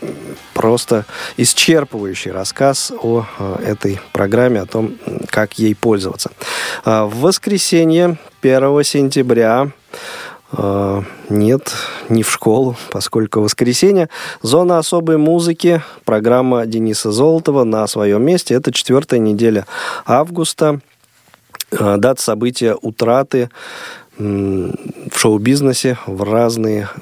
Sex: male